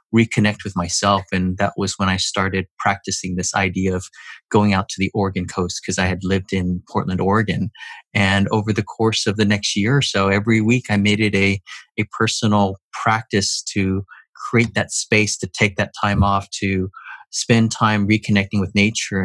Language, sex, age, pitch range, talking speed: English, male, 30-49, 100-110 Hz, 185 wpm